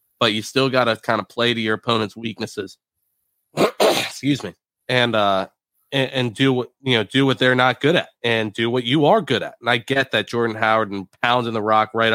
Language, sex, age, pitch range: English, male, 30-49, 105-125 Hz